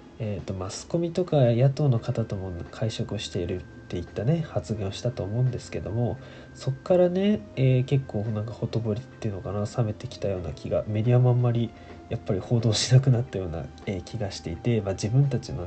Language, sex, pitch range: Japanese, male, 100-130 Hz